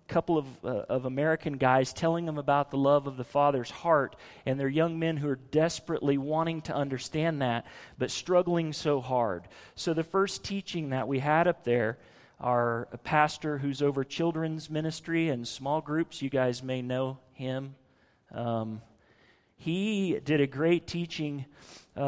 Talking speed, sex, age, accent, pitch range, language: 165 wpm, male, 40-59, American, 130-165 Hz, English